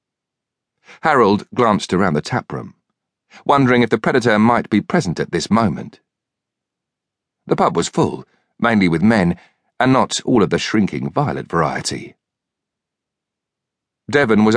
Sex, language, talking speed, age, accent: male, English, 130 wpm, 50-69, British